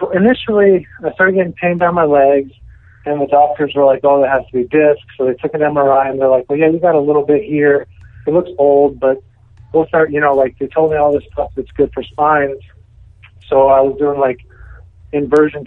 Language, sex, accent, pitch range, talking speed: English, male, American, 115-155 Hz, 235 wpm